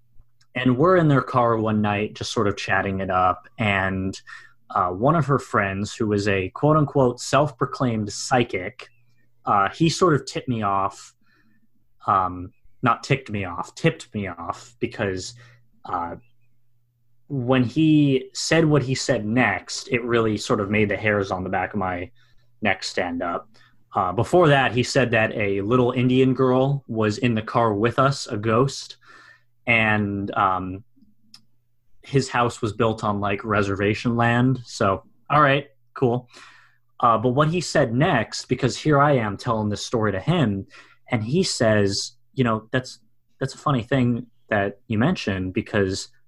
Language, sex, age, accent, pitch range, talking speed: English, male, 20-39, American, 105-130 Hz, 160 wpm